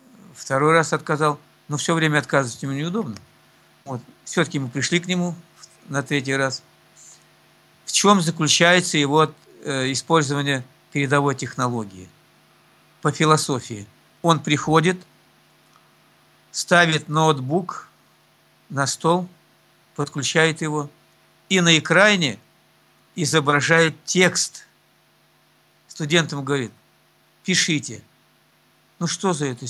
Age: 50-69